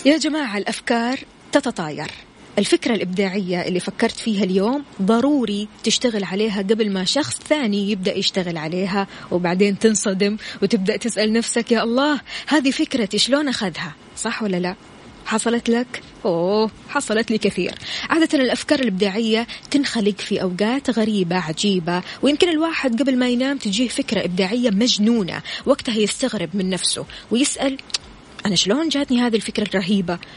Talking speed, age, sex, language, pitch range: 135 wpm, 20-39, female, Arabic, 195-250 Hz